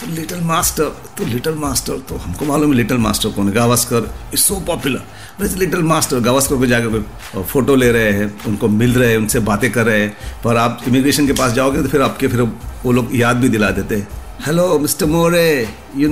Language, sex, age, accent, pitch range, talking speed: Hindi, male, 50-69, native, 105-145 Hz, 215 wpm